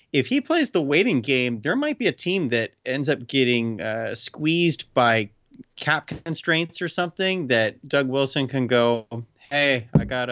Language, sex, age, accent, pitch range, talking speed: English, male, 30-49, American, 115-140 Hz, 175 wpm